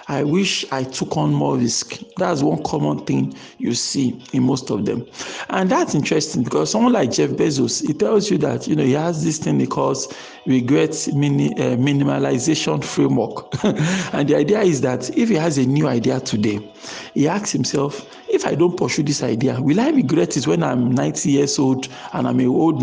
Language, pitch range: English, 135-185 Hz